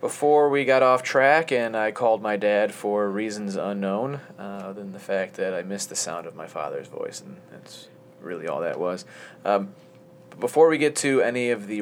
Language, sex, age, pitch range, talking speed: English, male, 30-49, 100-130 Hz, 210 wpm